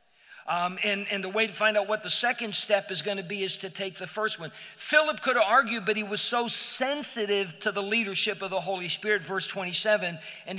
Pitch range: 175-215 Hz